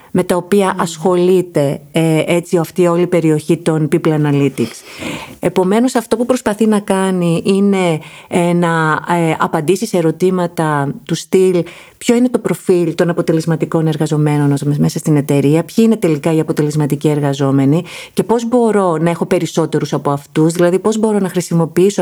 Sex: female